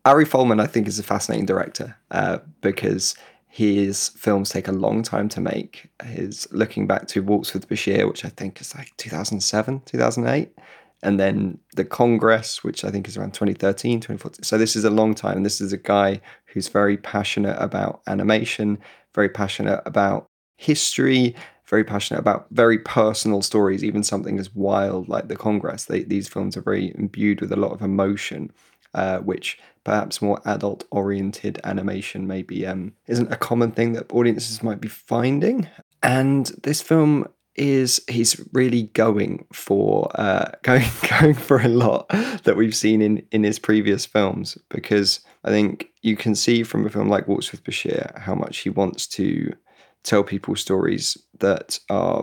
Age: 20-39